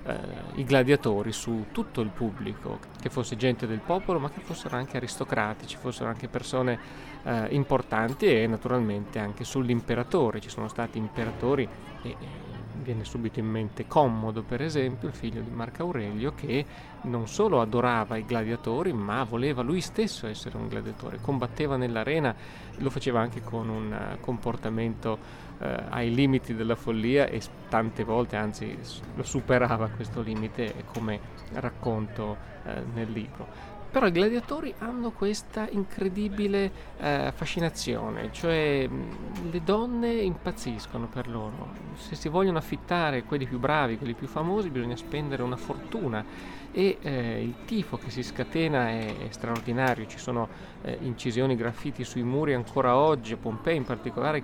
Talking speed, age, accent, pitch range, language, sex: 145 wpm, 30-49, native, 115-145 Hz, Italian, male